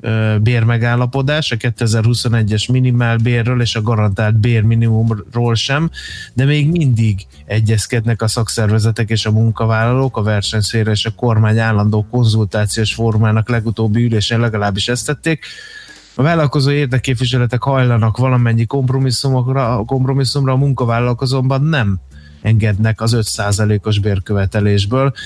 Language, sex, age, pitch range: Hungarian, male, 20-39, 105-125 Hz